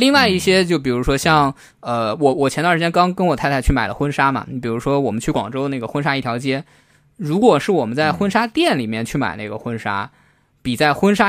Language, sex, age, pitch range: Chinese, male, 20-39, 120-175 Hz